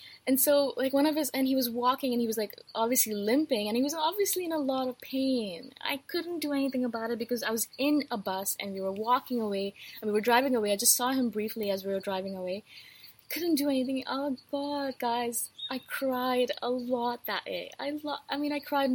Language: English